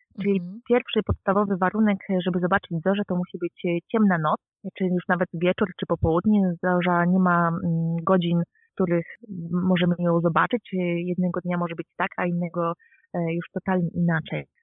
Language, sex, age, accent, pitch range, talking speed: Polish, female, 30-49, native, 170-195 Hz, 150 wpm